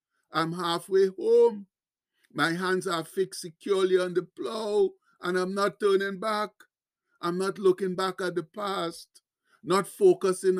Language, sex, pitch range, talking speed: English, male, 170-210 Hz, 140 wpm